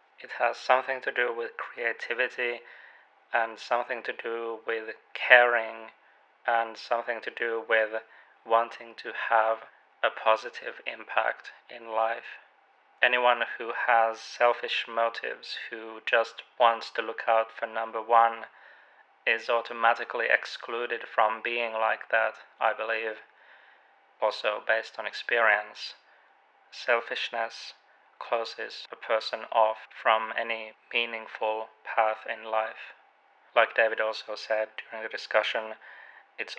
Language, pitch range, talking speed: English, 110-120 Hz, 120 wpm